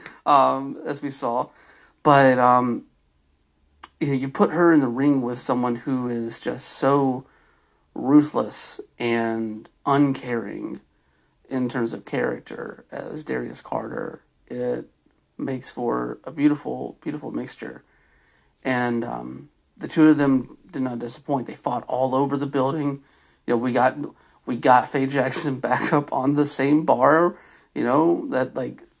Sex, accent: male, American